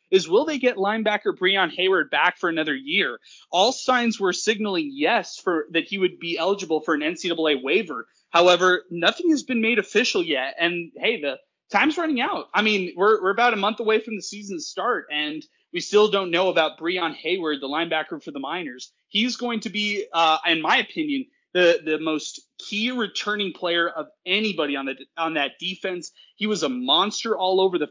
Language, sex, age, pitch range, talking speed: English, male, 20-39, 165-215 Hz, 200 wpm